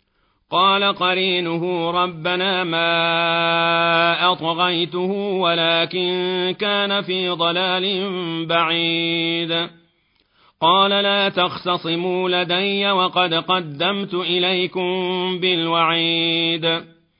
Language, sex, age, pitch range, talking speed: Arabic, male, 40-59, 165-185 Hz, 65 wpm